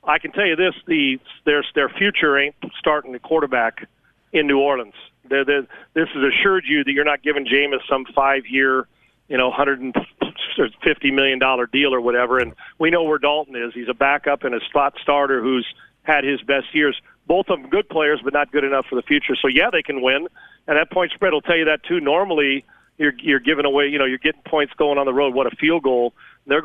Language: English